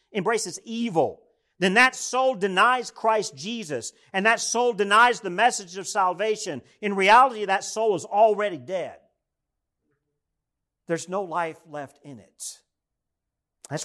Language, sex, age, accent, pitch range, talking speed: English, male, 50-69, American, 145-205 Hz, 130 wpm